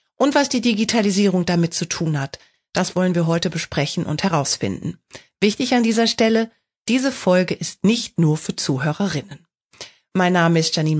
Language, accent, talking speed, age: German, German, 165 wpm, 40-59